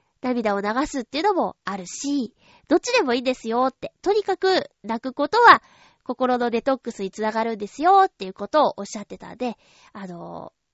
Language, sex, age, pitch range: Japanese, female, 20-39, 225-330 Hz